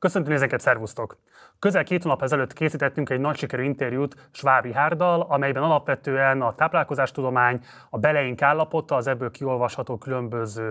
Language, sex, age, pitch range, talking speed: Hungarian, male, 30-49, 125-150 Hz, 140 wpm